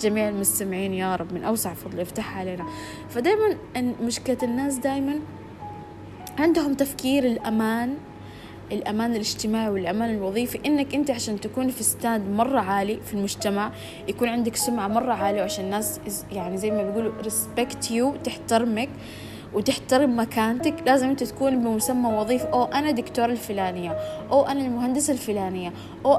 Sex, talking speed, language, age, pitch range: female, 135 wpm, Arabic, 20-39, 205-270 Hz